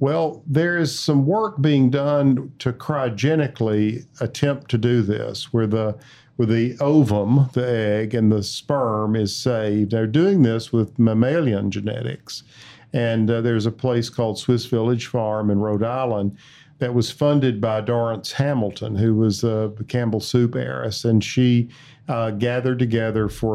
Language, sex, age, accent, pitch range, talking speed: English, male, 50-69, American, 110-130 Hz, 155 wpm